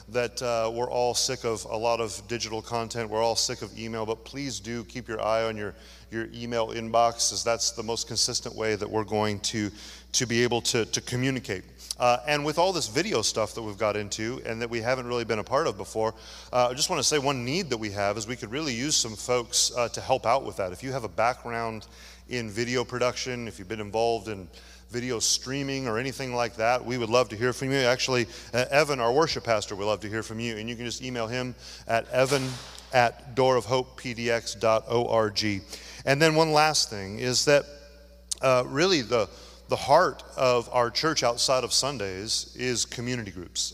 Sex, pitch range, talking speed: male, 110-130 Hz, 215 wpm